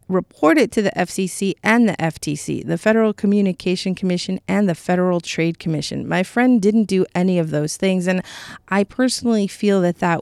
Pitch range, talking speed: 170-225 Hz, 180 wpm